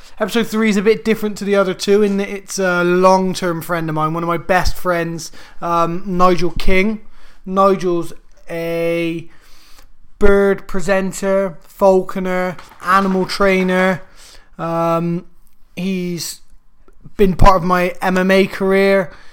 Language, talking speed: English, 125 wpm